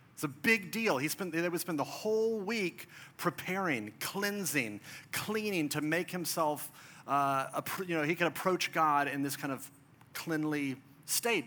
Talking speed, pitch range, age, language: 155 wpm, 140-180 Hz, 40-59, English